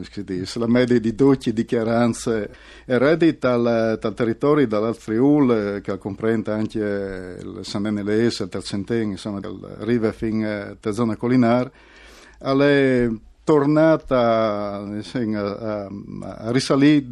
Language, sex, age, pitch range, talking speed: Italian, male, 50-69, 110-130 Hz, 100 wpm